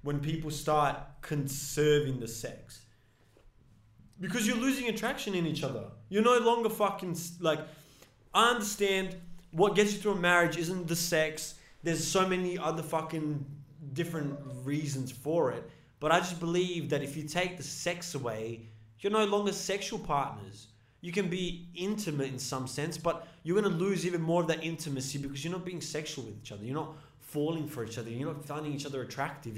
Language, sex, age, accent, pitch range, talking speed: English, male, 20-39, Australian, 140-180 Hz, 185 wpm